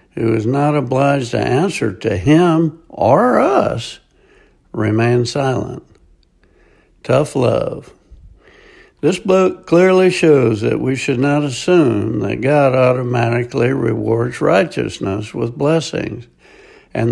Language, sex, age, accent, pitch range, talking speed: English, male, 60-79, American, 120-165 Hz, 110 wpm